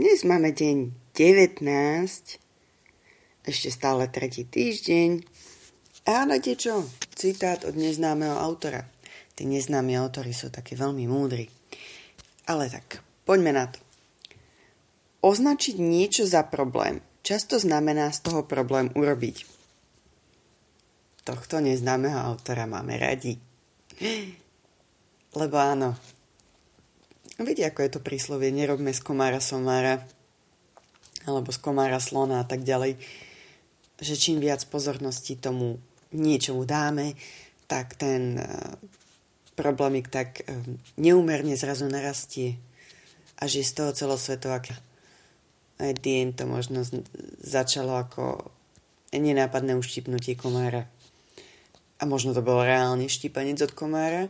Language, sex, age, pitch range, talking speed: English, female, 30-49, 125-150 Hz, 105 wpm